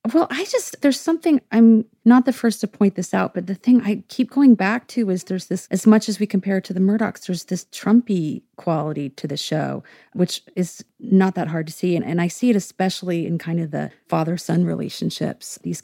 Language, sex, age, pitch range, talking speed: English, female, 30-49, 155-200 Hz, 225 wpm